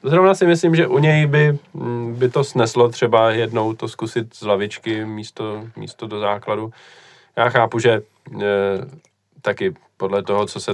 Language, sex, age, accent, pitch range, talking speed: Czech, male, 20-39, native, 100-125 Hz, 160 wpm